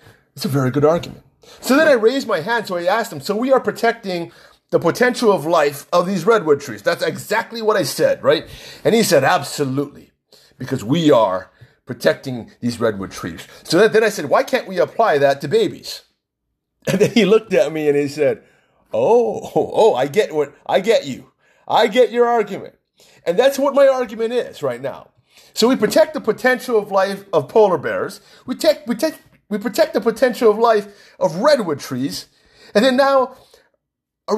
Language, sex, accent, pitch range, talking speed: English, male, American, 170-265 Hz, 195 wpm